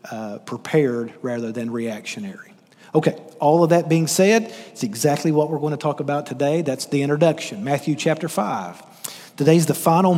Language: English